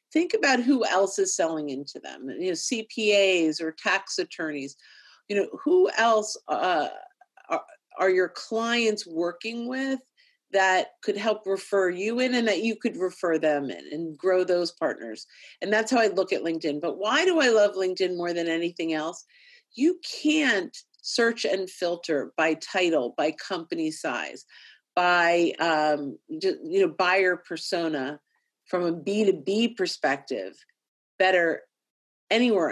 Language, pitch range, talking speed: English, 165-245 Hz, 150 wpm